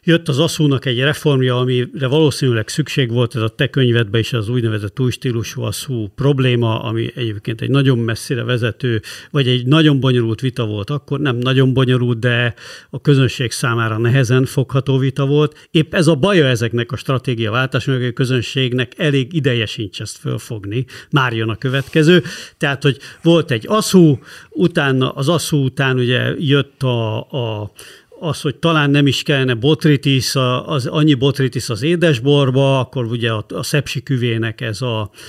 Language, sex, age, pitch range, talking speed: Hungarian, male, 50-69, 120-145 Hz, 165 wpm